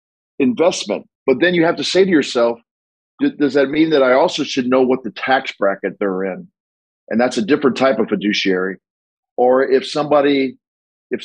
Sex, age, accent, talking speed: male, 50-69, American, 180 wpm